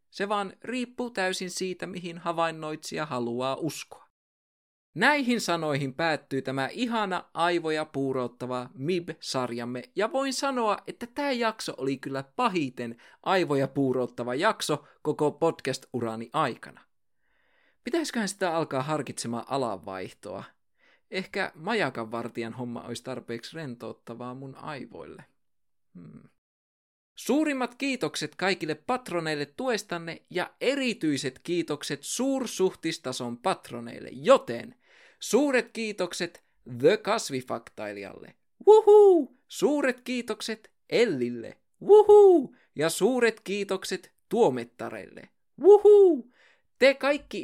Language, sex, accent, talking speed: Finnish, male, native, 95 wpm